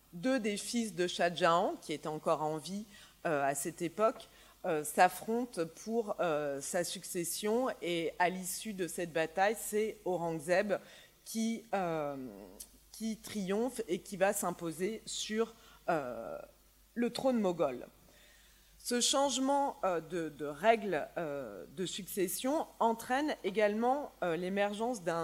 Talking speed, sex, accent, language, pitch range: 130 wpm, female, French, French, 170-230 Hz